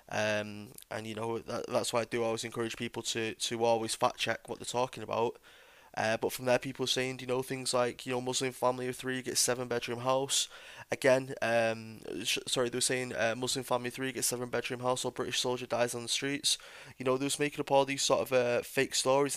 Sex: male